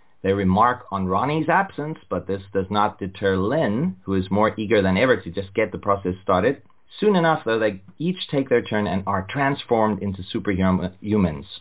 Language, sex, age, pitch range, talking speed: English, male, 30-49, 95-120 Hz, 185 wpm